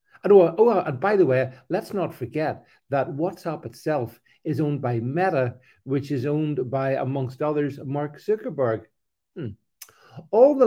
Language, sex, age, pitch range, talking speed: English, male, 50-69, 125-180 Hz, 155 wpm